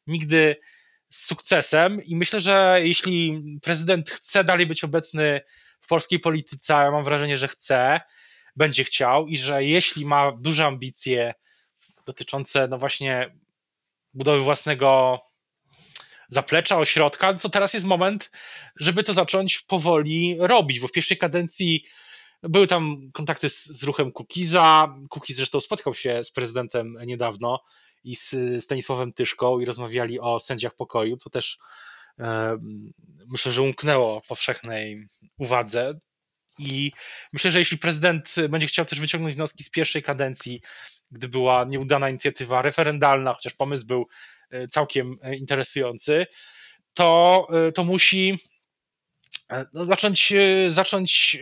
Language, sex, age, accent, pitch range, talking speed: Polish, male, 20-39, native, 130-175 Hz, 125 wpm